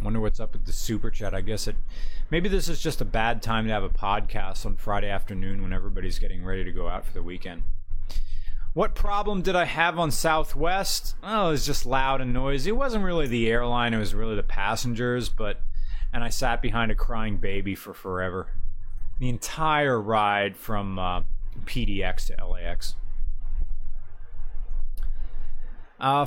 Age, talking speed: 30-49, 175 wpm